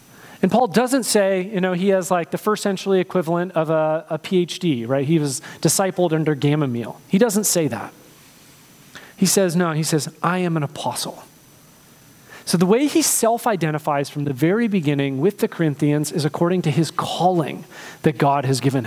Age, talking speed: 30-49, 185 wpm